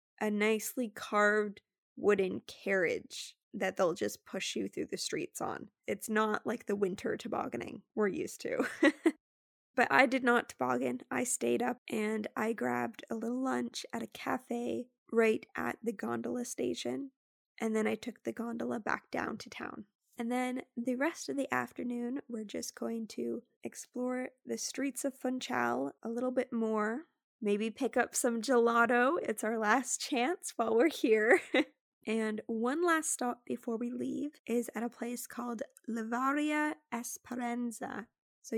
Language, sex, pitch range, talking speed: English, female, 215-255 Hz, 160 wpm